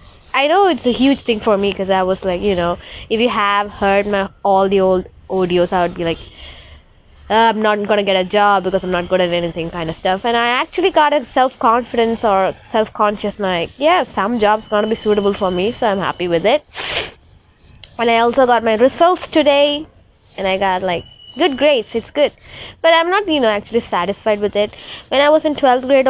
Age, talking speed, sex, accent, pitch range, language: 20-39, 225 wpm, female, Indian, 185-250 Hz, English